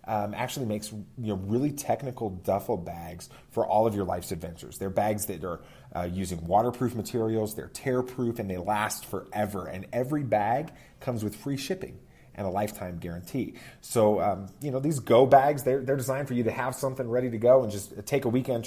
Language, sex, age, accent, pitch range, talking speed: English, male, 30-49, American, 100-130 Hz, 215 wpm